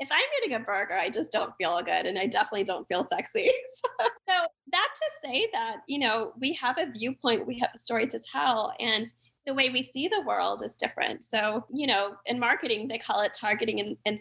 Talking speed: 225 wpm